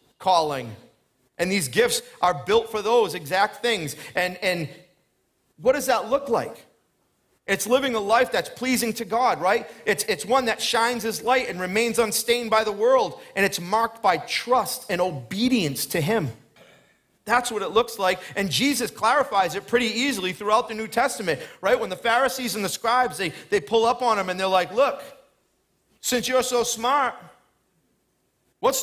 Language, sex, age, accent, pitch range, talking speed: English, male, 40-59, American, 190-255 Hz, 175 wpm